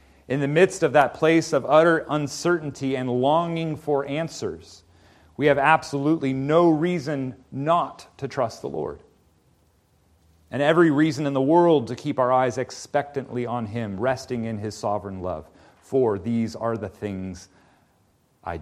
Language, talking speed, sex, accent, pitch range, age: English, 150 wpm, male, American, 105-140 Hz, 40-59